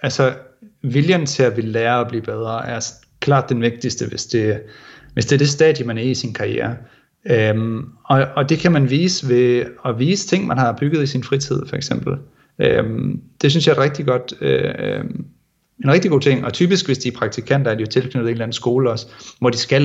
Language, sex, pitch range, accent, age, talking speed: Danish, male, 115-140 Hz, native, 30-49, 225 wpm